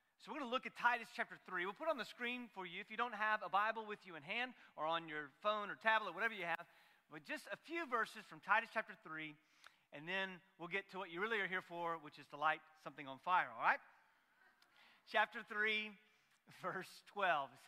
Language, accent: English, American